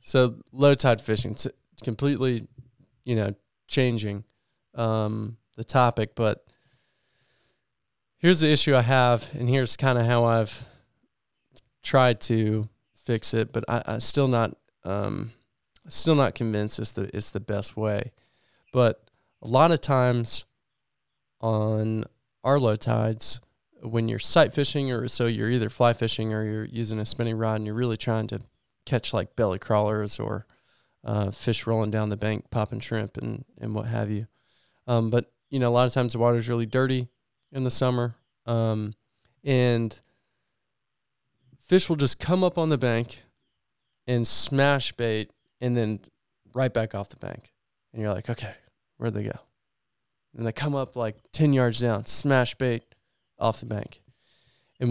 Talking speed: 160 wpm